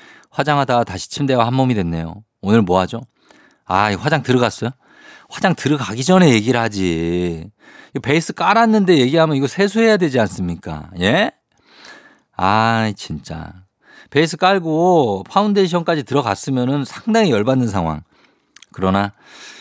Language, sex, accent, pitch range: Korean, male, native, 100-145 Hz